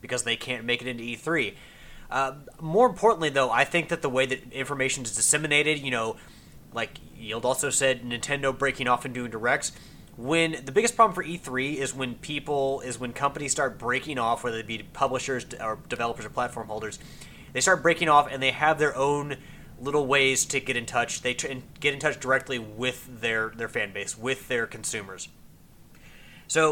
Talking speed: 195 wpm